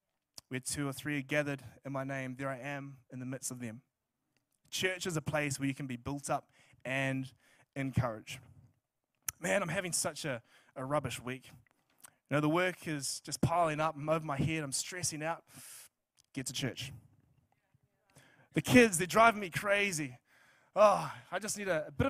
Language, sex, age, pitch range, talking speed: English, male, 20-39, 135-185 Hz, 185 wpm